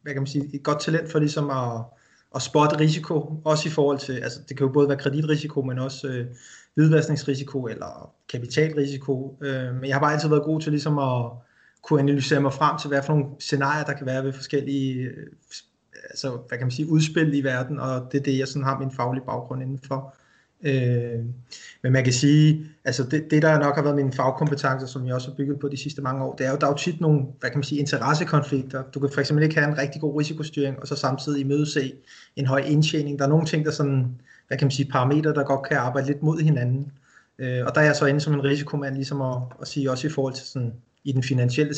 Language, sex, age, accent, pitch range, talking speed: Danish, male, 20-39, native, 130-150 Hz, 240 wpm